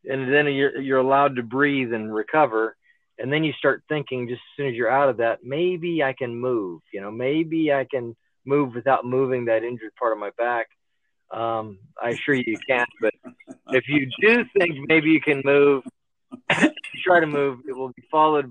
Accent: American